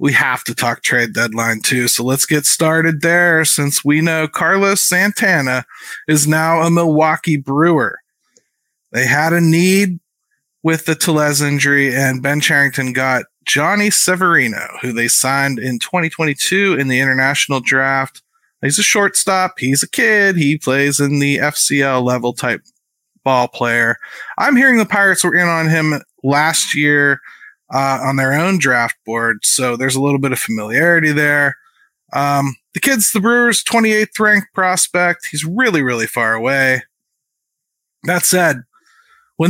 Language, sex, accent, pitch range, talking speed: English, male, American, 135-185 Hz, 150 wpm